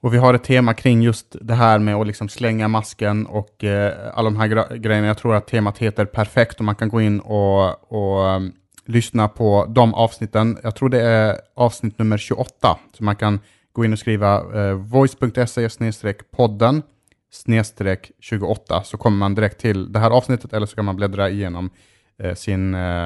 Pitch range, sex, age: 100-115 Hz, male, 30-49